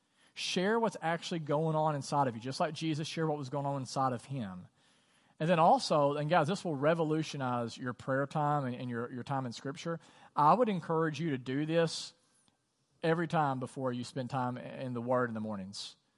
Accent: American